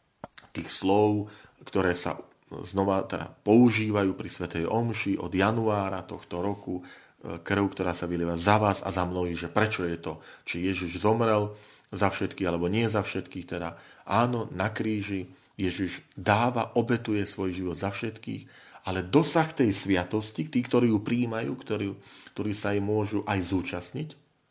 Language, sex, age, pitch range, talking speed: Slovak, male, 40-59, 90-115 Hz, 150 wpm